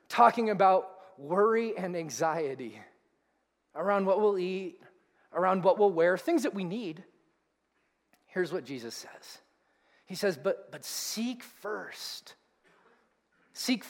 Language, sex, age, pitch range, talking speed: English, male, 30-49, 190-270 Hz, 120 wpm